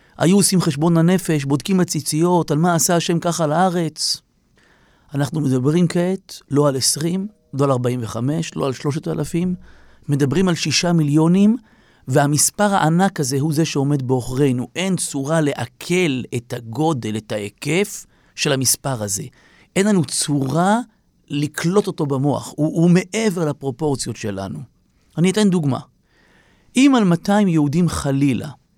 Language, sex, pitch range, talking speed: Hebrew, male, 140-180 Hz, 135 wpm